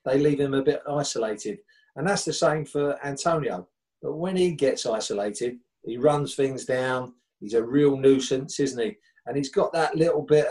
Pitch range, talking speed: 130-160 Hz, 190 wpm